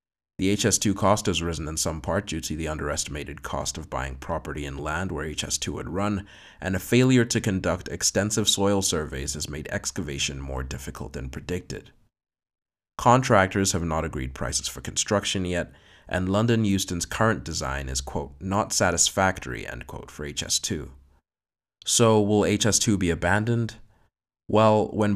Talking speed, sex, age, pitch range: 155 wpm, male, 30-49, 75-100 Hz